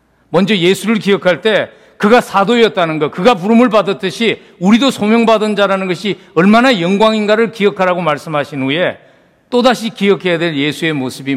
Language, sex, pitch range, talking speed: English, male, 135-195 Hz, 125 wpm